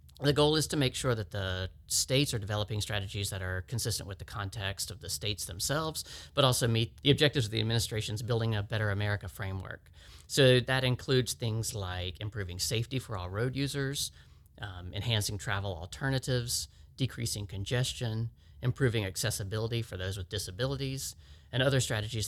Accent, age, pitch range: American, 30-49, 100-125 Hz